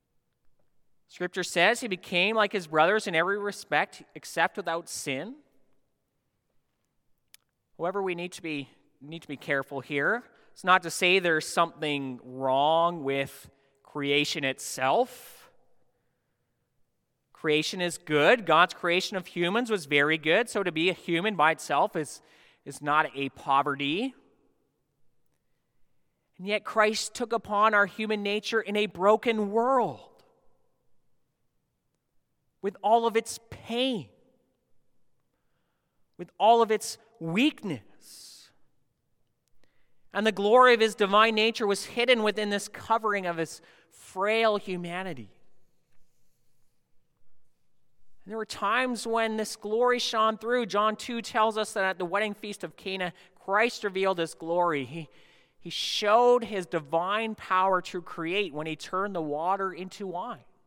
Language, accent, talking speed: English, American, 130 wpm